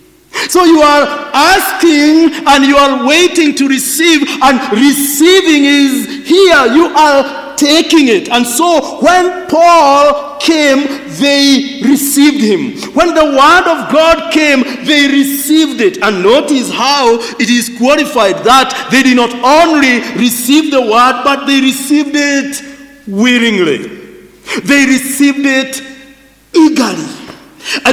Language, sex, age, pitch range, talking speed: English, male, 50-69, 255-315 Hz, 125 wpm